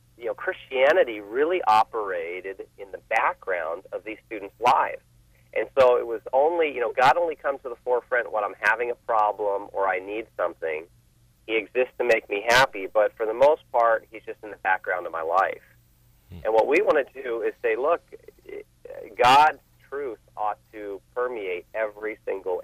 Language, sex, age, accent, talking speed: English, male, 40-59, American, 185 wpm